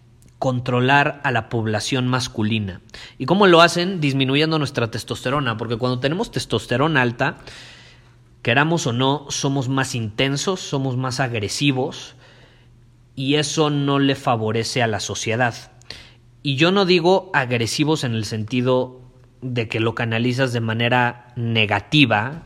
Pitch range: 115-135 Hz